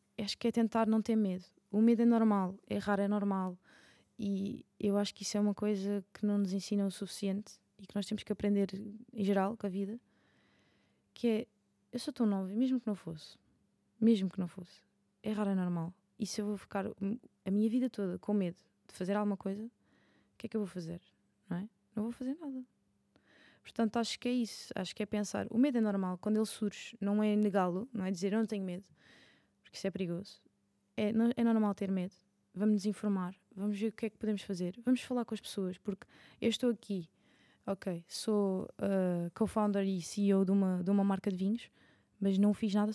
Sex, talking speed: female, 220 wpm